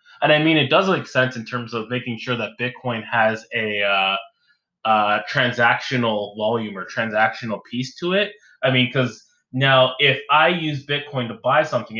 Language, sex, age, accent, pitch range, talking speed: English, male, 20-39, American, 115-150 Hz, 180 wpm